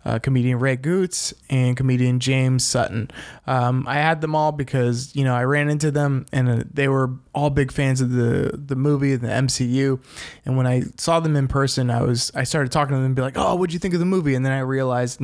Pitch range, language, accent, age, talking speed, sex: 125-145 Hz, English, American, 20-39, 250 wpm, male